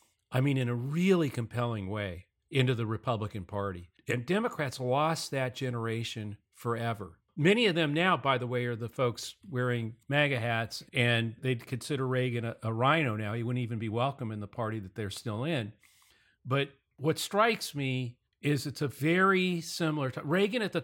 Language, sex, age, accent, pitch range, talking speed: English, male, 50-69, American, 115-145 Hz, 180 wpm